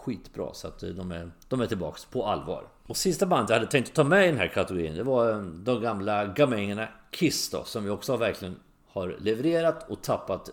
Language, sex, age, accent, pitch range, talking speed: English, male, 40-59, Swedish, 90-125 Hz, 215 wpm